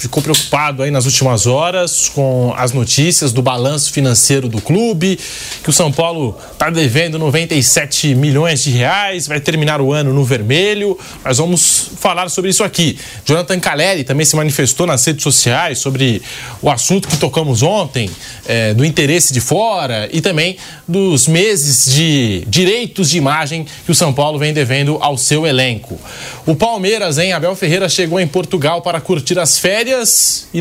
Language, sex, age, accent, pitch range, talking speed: Portuguese, male, 20-39, Brazilian, 135-185 Hz, 165 wpm